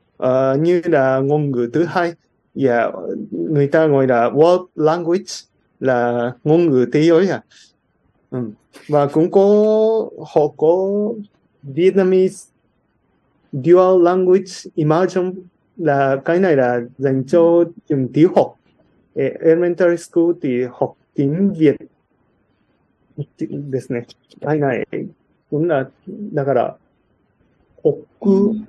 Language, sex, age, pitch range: Japanese, male, 30-49, 145-190 Hz